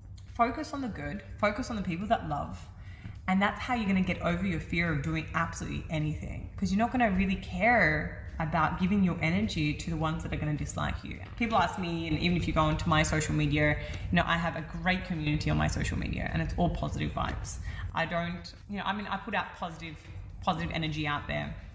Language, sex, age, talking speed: English, female, 20-39, 235 wpm